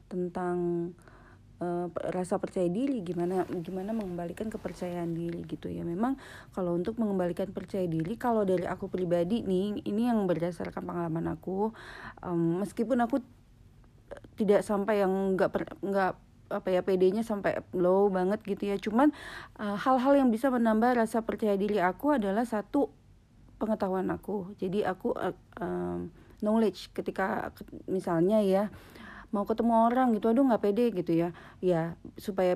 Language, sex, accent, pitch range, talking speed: Indonesian, female, native, 175-220 Hz, 140 wpm